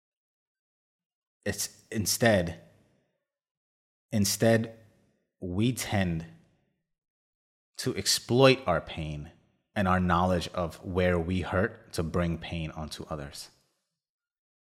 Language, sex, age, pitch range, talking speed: English, male, 30-49, 80-100 Hz, 85 wpm